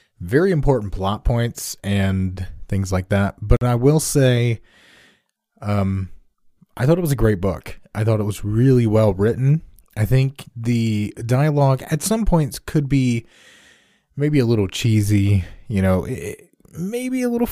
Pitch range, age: 100-130 Hz, 20-39